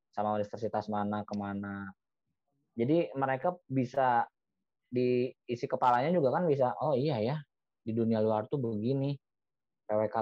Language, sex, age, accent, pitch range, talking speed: Indonesian, male, 20-39, native, 110-145 Hz, 125 wpm